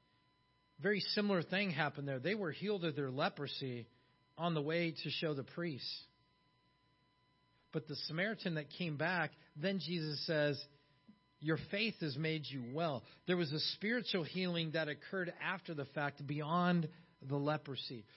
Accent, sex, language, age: American, male, English, 40-59